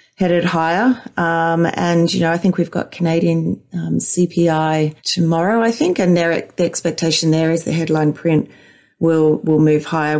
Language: English